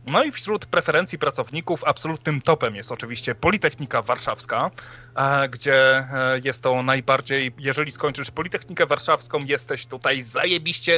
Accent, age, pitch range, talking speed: native, 30-49, 130-155 Hz, 120 wpm